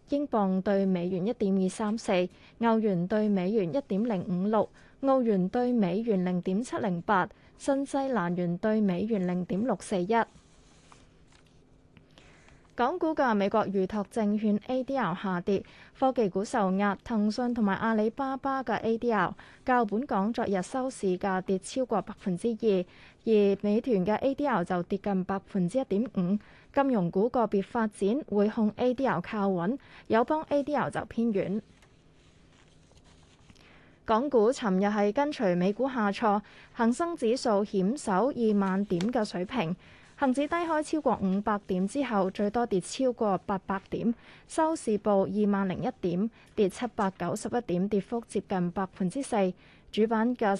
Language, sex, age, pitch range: Chinese, female, 20-39, 195-240 Hz